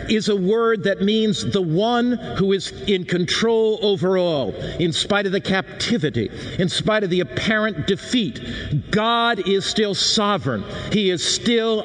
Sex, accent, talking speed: male, American, 155 wpm